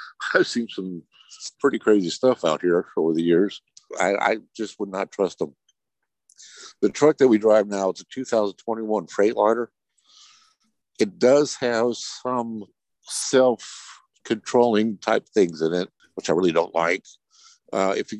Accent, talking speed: American, 150 wpm